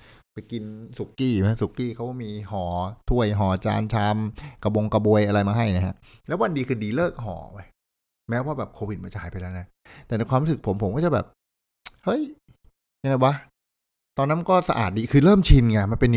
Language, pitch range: Thai, 90-120 Hz